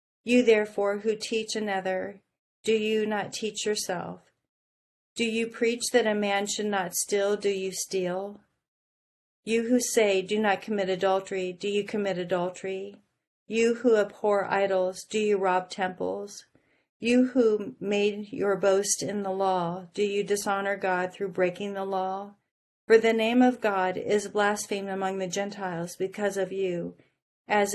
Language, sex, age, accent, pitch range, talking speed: English, female, 40-59, American, 190-215 Hz, 155 wpm